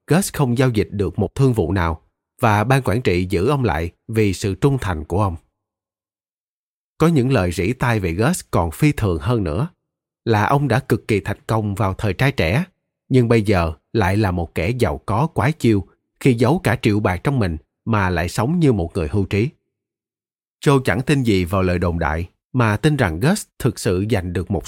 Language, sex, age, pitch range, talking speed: Vietnamese, male, 20-39, 95-135 Hz, 215 wpm